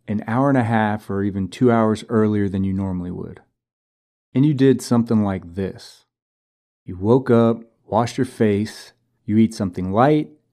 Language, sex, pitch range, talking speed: English, male, 105-130 Hz, 170 wpm